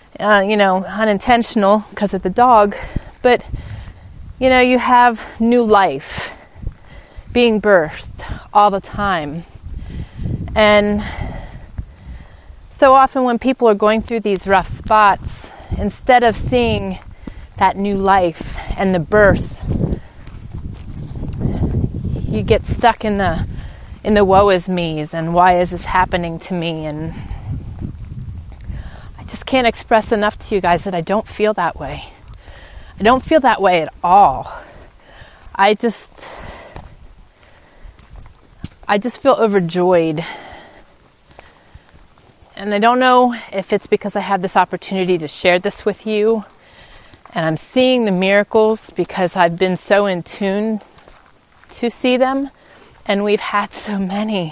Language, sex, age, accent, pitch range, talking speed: English, female, 30-49, American, 175-220 Hz, 130 wpm